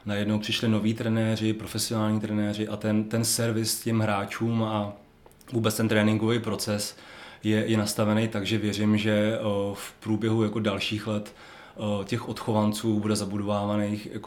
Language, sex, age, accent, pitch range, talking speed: Czech, male, 30-49, native, 105-110 Hz, 130 wpm